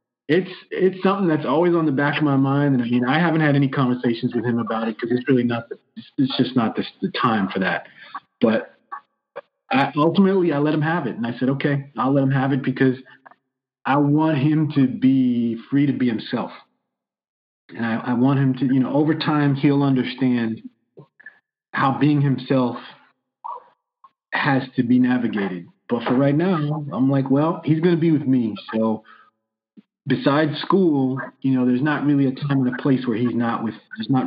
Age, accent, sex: 40-59, American, male